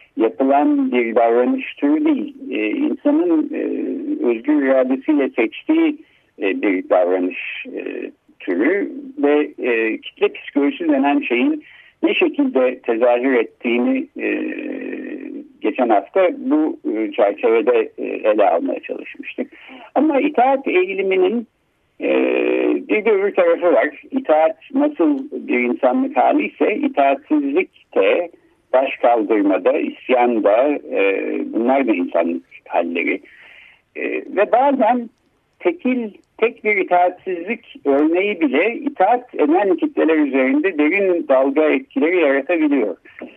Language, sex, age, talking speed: Turkish, male, 60-79, 100 wpm